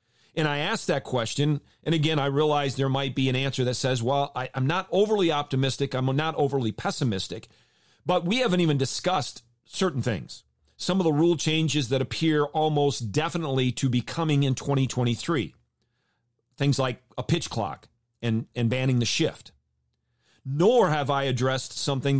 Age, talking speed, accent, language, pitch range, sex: 40-59, 165 wpm, American, English, 125-155 Hz, male